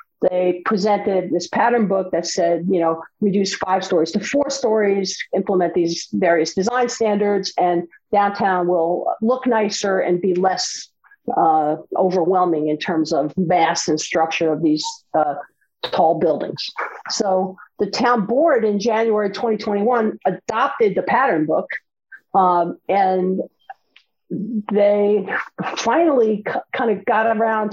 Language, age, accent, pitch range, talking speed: English, 50-69, American, 180-225 Hz, 130 wpm